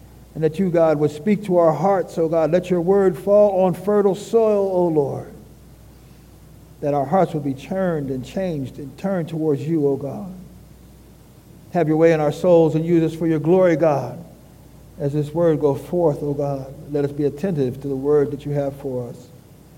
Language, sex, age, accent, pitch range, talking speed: English, male, 50-69, American, 150-210 Hz, 200 wpm